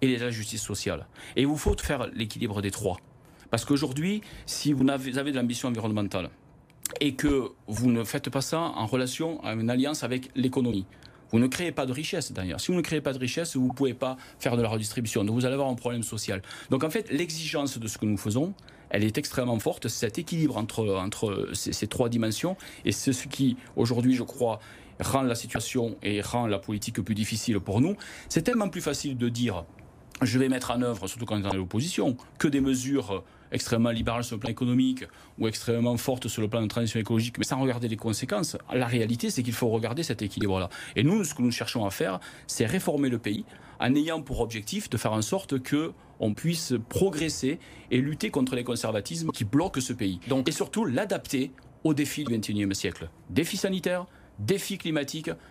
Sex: male